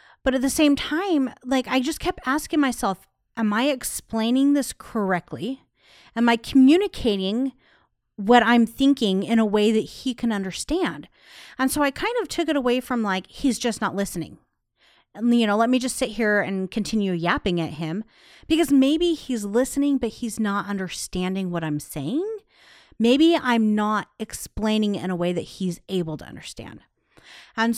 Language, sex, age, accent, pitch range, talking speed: English, female, 30-49, American, 190-260 Hz, 175 wpm